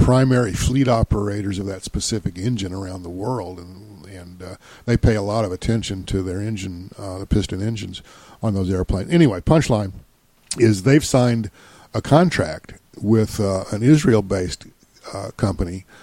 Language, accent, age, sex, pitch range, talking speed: English, American, 50-69, male, 95-115 Hz, 155 wpm